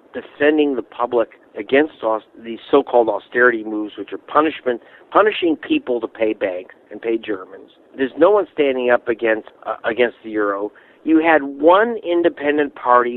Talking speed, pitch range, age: 160 wpm, 115-190 Hz, 50-69